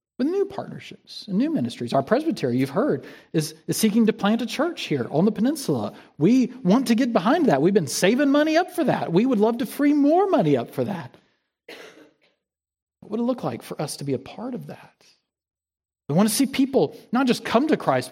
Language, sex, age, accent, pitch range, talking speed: English, male, 40-59, American, 155-250 Hz, 220 wpm